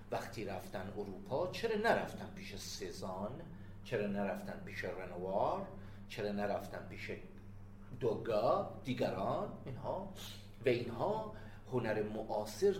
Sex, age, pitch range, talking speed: male, 40-59, 100-155 Hz, 100 wpm